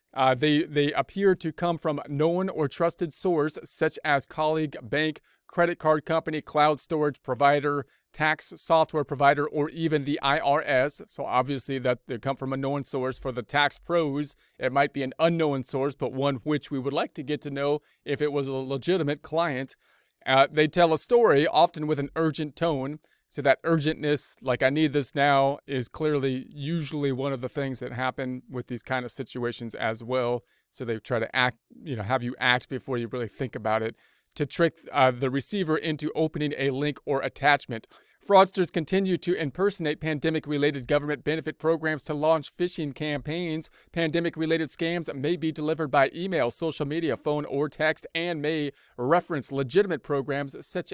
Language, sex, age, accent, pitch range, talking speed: English, male, 40-59, American, 135-160 Hz, 185 wpm